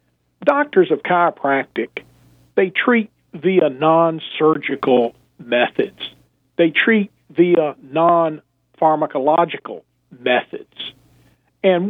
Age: 50-69